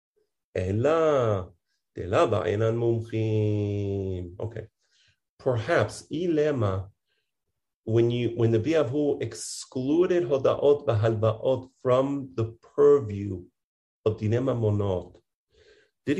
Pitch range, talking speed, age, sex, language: 110-145 Hz, 65 wpm, 40-59, male, English